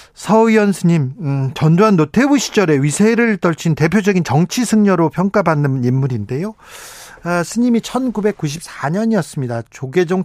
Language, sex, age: Korean, male, 40-59